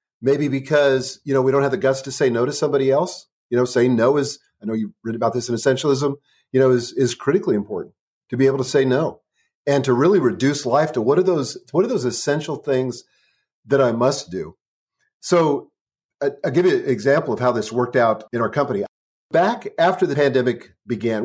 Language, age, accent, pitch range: English, 40-59, American, 125-150 Hz